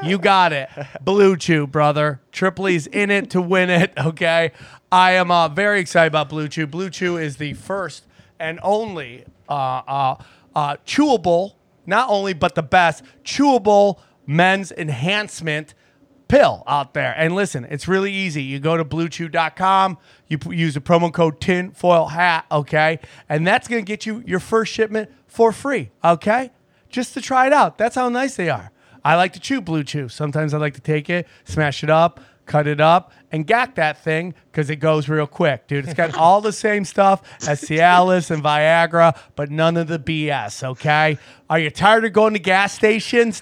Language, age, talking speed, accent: English, 30-49, 185 wpm, American